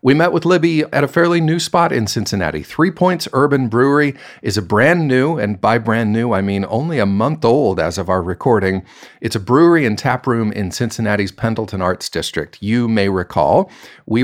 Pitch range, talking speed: 95-125 Hz, 200 wpm